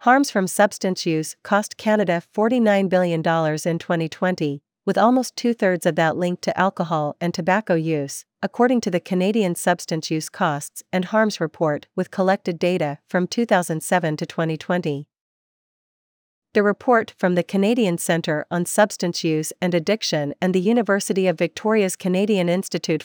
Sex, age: female, 40-59